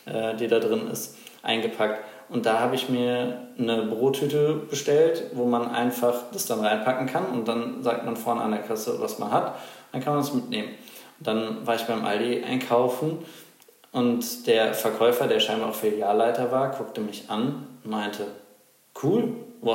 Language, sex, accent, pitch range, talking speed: German, male, German, 110-125 Hz, 175 wpm